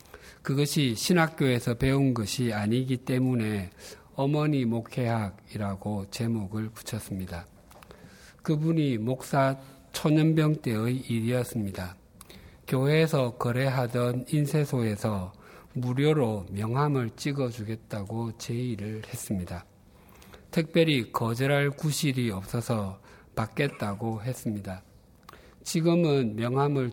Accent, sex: native, male